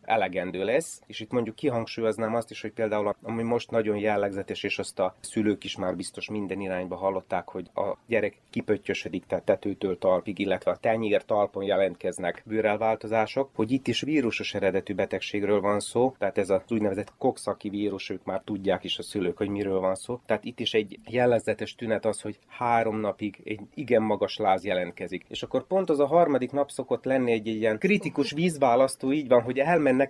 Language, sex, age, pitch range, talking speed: Hungarian, male, 30-49, 105-130 Hz, 185 wpm